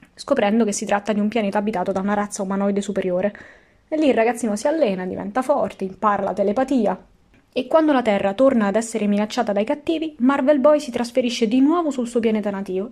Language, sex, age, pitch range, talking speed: Italian, female, 20-39, 200-250 Hz, 205 wpm